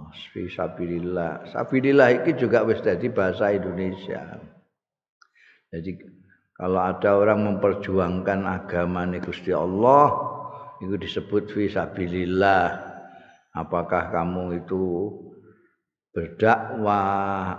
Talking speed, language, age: 80 wpm, Indonesian, 50-69